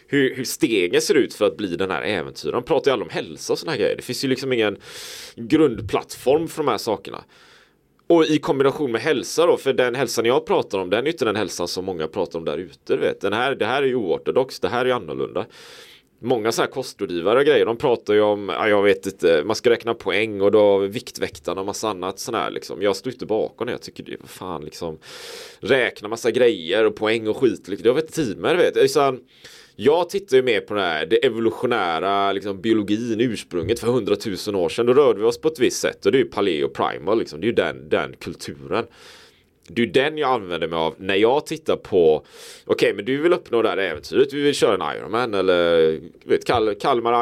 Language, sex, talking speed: Swedish, male, 230 wpm